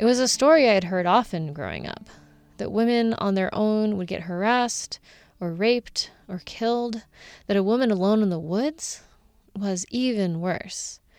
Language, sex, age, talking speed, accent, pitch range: English, female, 20-39, 170 wpm, American, 185-235 Hz